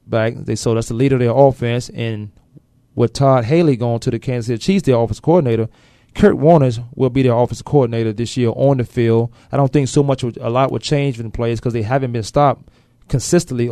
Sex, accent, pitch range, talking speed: male, American, 115-140 Hz, 225 wpm